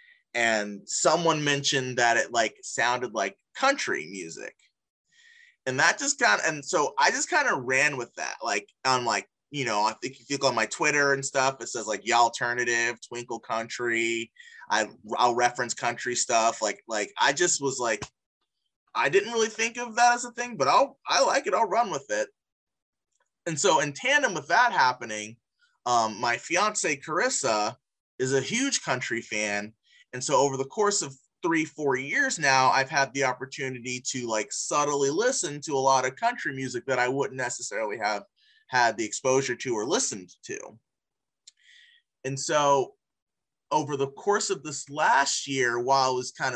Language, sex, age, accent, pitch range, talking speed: English, male, 20-39, American, 125-205 Hz, 180 wpm